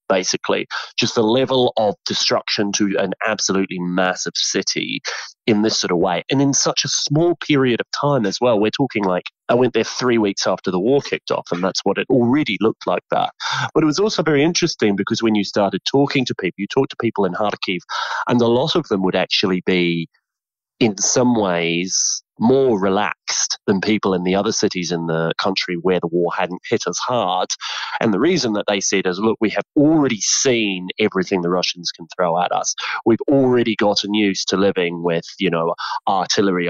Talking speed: 205 wpm